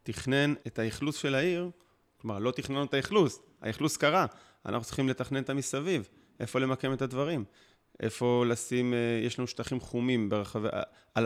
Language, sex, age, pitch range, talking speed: Hebrew, male, 30-49, 115-135 Hz, 155 wpm